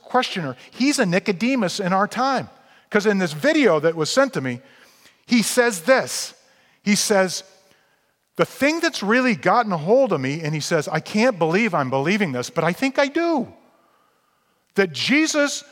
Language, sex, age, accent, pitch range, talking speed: English, male, 40-59, American, 195-255 Hz, 175 wpm